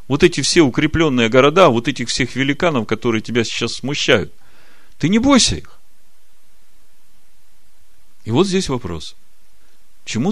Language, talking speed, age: Russian, 130 wpm, 40-59